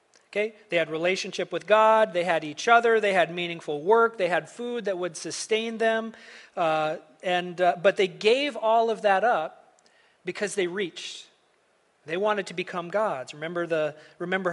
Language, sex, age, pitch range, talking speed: English, male, 40-59, 170-225 Hz, 175 wpm